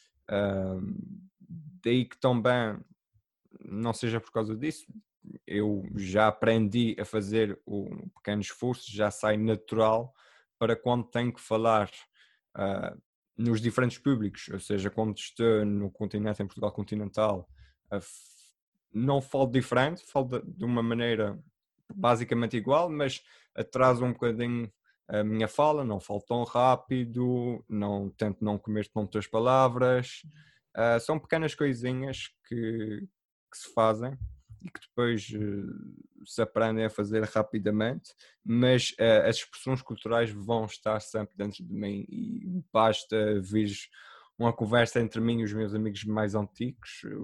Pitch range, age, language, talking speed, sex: 105-125 Hz, 20-39, Portuguese, 135 wpm, male